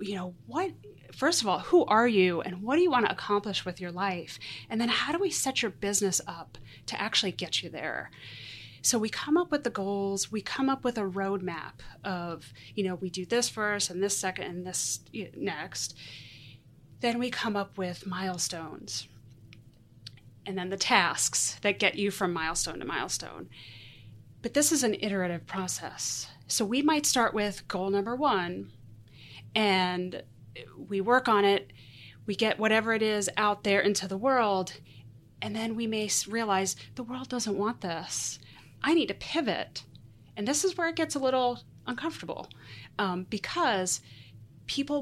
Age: 30-49